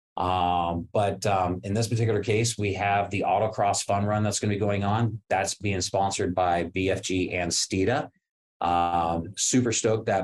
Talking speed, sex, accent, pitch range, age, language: 175 wpm, male, American, 90-115 Hz, 30-49, English